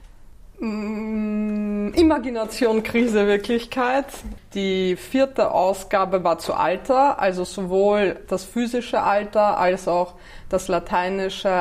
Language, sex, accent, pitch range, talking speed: German, female, German, 175-210 Hz, 100 wpm